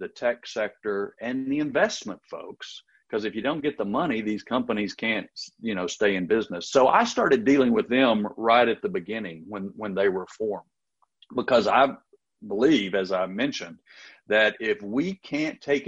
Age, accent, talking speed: 50-69, American, 175 wpm